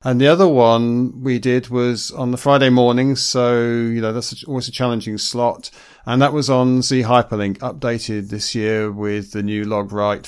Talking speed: 195 wpm